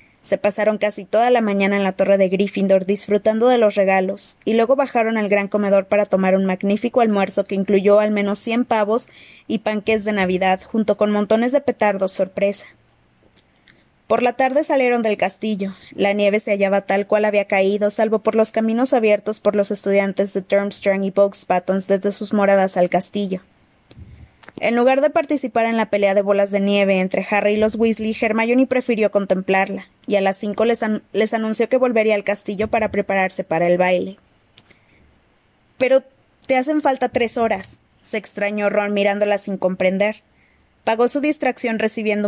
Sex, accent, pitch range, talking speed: female, Mexican, 195-225 Hz, 175 wpm